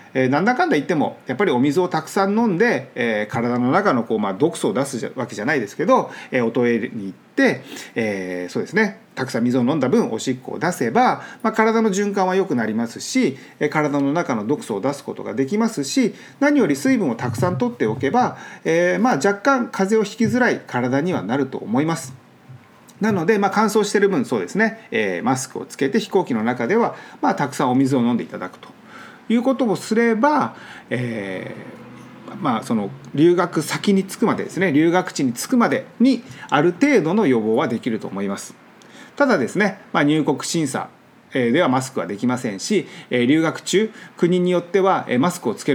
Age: 40-59